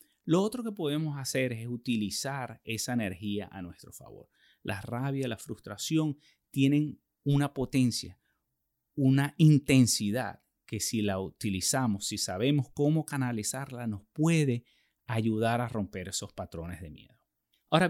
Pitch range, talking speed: 110-145 Hz, 130 wpm